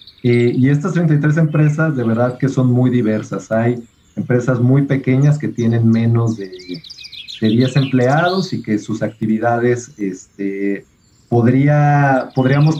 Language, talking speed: Spanish, 125 wpm